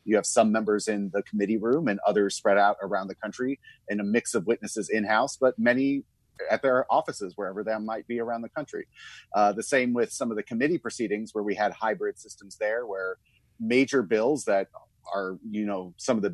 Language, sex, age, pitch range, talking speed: English, male, 30-49, 100-125 Hz, 215 wpm